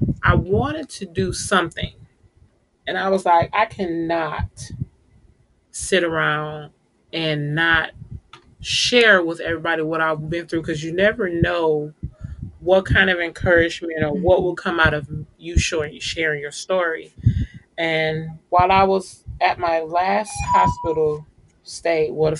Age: 30-49